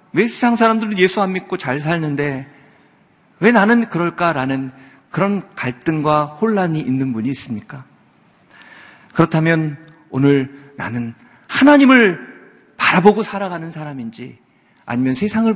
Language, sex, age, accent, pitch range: Korean, male, 50-69, native, 125-200 Hz